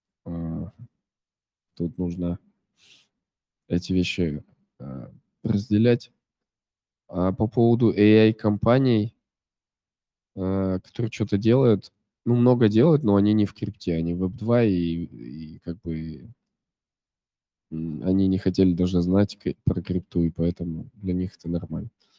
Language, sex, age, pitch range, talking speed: Russian, male, 20-39, 90-105 Hz, 110 wpm